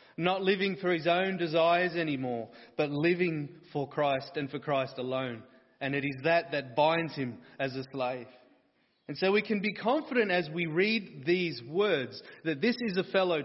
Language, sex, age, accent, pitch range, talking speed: English, male, 30-49, Australian, 155-190 Hz, 185 wpm